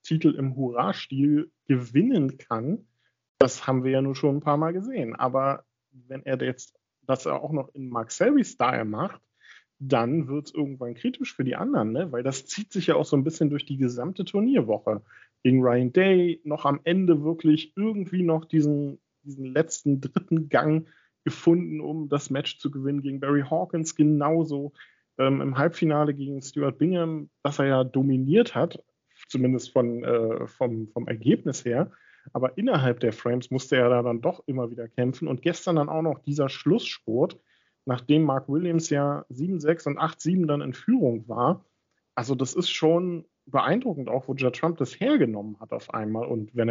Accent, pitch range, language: German, 125-160 Hz, German